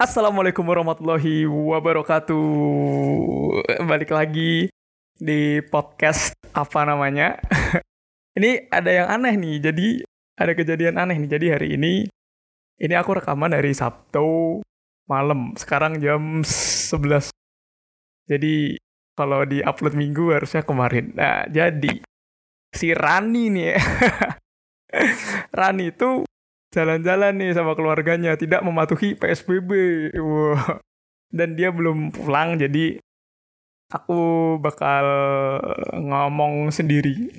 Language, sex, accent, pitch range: Indonesian, male, native, 145-170 Hz